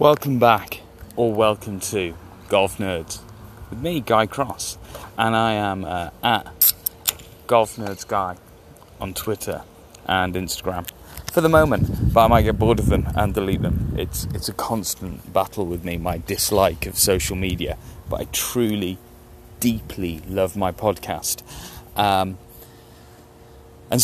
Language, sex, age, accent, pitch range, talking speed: English, male, 30-49, British, 90-115 Hz, 140 wpm